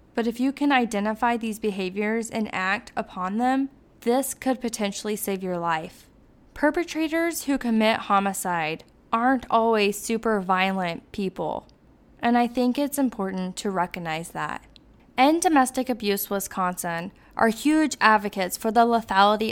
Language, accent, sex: English, American, female